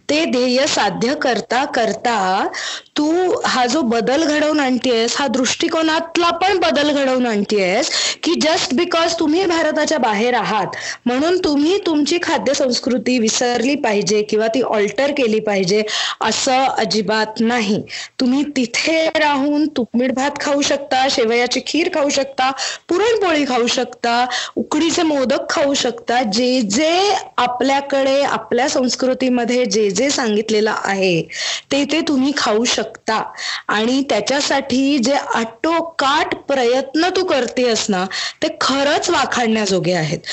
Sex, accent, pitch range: female, native, 235-300 Hz